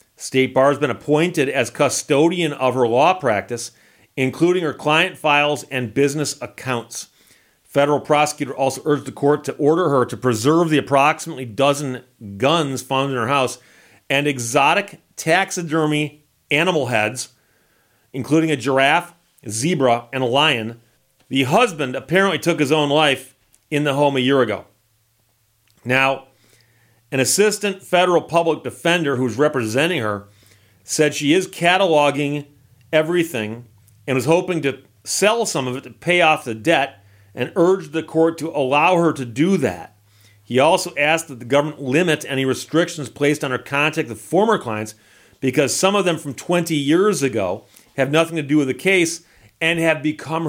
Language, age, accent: English, 40-59, American